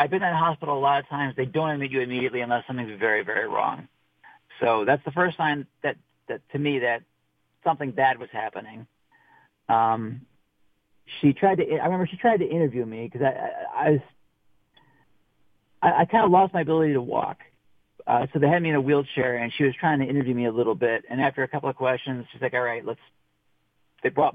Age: 40-59